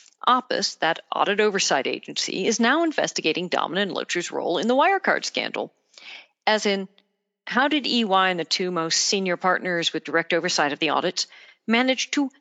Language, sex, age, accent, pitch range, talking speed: English, female, 50-69, American, 180-265 Hz, 165 wpm